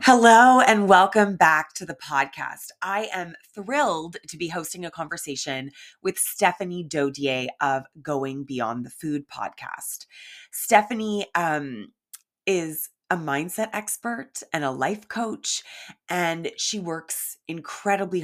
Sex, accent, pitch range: female, American, 145-200 Hz